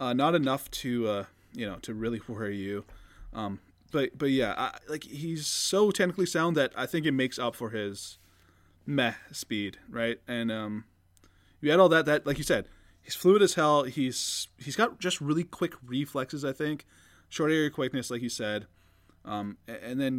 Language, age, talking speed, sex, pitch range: English, 20-39, 190 wpm, male, 100-135 Hz